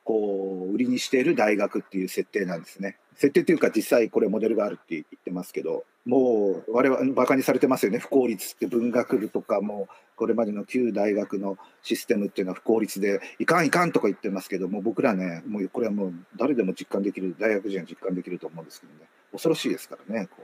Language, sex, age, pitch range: Japanese, male, 40-59, 100-165 Hz